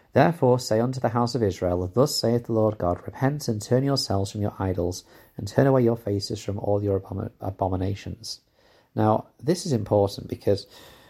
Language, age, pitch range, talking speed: English, 40-59, 95-120 Hz, 185 wpm